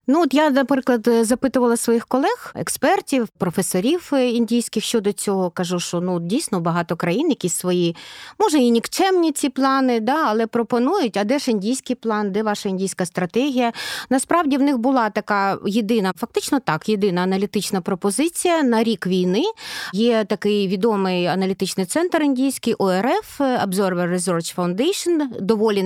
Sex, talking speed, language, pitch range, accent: female, 145 wpm, Ukrainian, 195-275 Hz, native